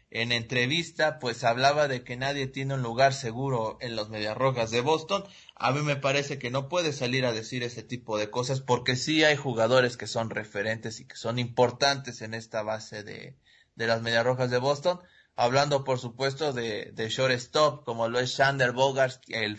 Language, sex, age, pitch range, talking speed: Spanish, male, 30-49, 115-140 Hz, 195 wpm